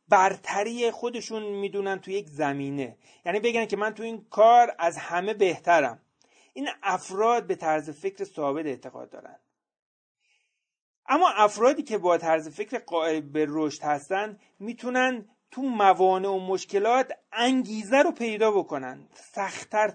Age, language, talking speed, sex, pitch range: 30-49, Persian, 130 wpm, male, 165-225 Hz